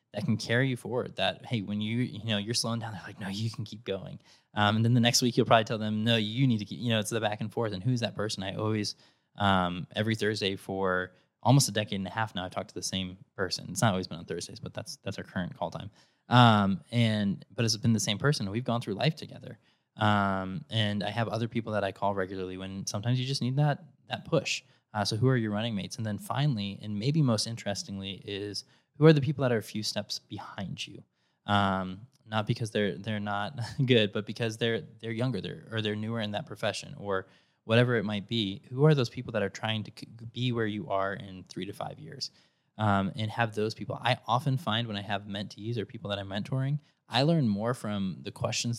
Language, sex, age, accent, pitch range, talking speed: English, male, 20-39, American, 100-120 Hz, 245 wpm